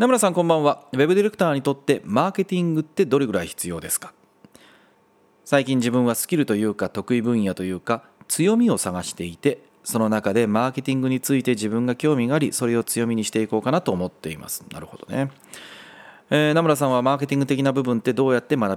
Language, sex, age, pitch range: Japanese, male, 30-49, 105-155 Hz